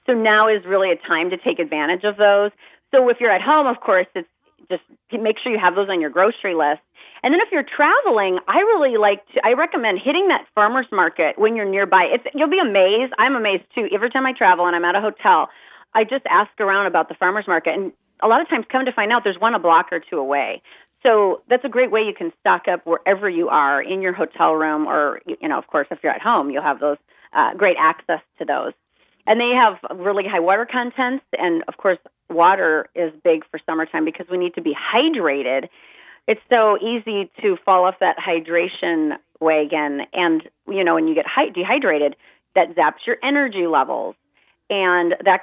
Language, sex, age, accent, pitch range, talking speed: English, female, 30-49, American, 175-230 Hz, 215 wpm